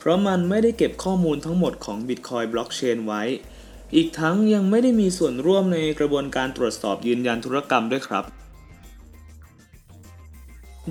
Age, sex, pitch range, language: 20-39, male, 120-175 Hz, Thai